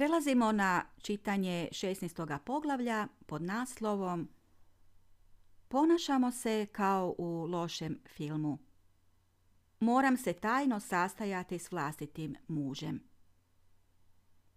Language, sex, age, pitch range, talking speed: Croatian, female, 40-59, 155-225 Hz, 80 wpm